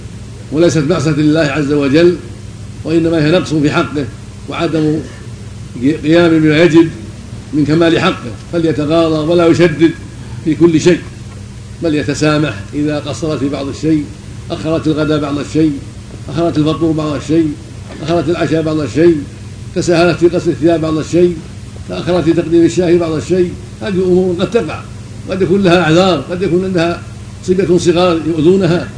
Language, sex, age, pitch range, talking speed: Arabic, male, 60-79, 115-170 Hz, 140 wpm